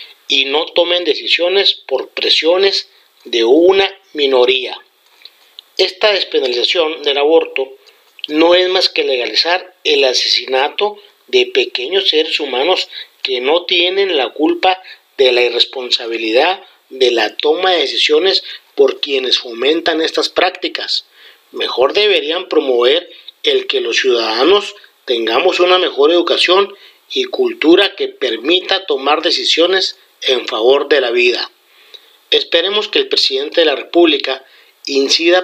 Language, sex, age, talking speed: Spanish, male, 40-59, 120 wpm